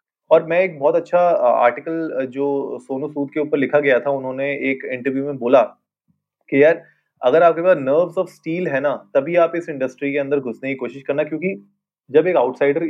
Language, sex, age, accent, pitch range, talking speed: Hindi, male, 30-49, native, 135-170 Hz, 200 wpm